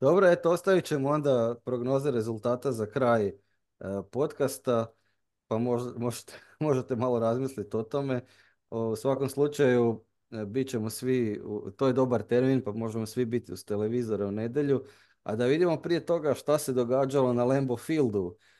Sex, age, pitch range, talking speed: male, 30-49, 105-130 Hz, 160 wpm